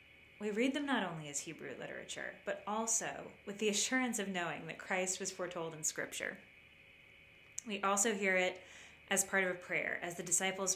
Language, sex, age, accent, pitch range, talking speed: English, female, 20-39, American, 160-200 Hz, 185 wpm